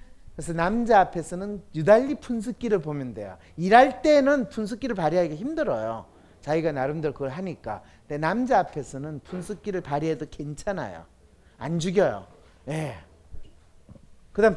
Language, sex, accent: Korean, male, native